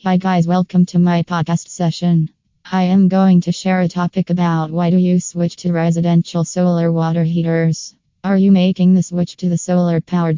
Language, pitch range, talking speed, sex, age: English, 165-180 Hz, 190 wpm, female, 20-39